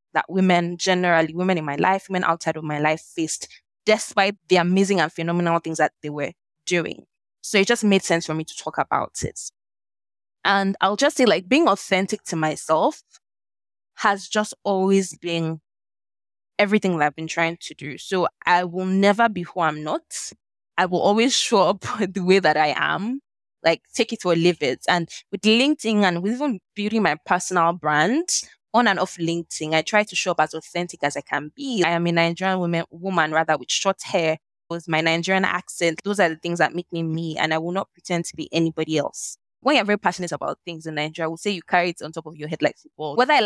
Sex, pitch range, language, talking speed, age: female, 165-205 Hz, English, 215 wpm, 20-39